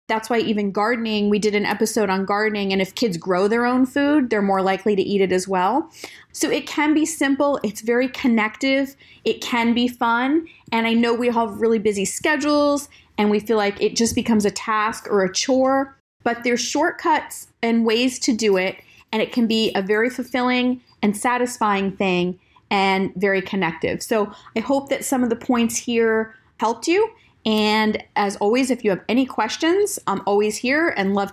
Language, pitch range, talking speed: English, 200-255 Hz, 195 wpm